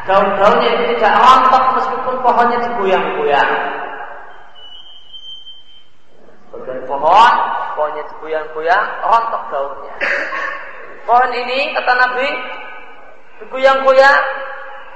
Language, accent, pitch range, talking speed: Indonesian, native, 190-255 Hz, 75 wpm